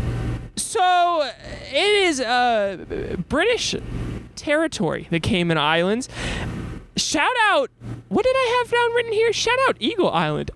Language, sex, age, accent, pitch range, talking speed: English, male, 20-39, American, 195-285 Hz, 130 wpm